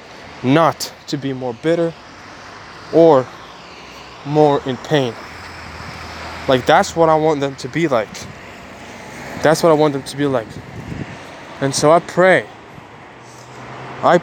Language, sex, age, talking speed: English, male, 20-39, 130 wpm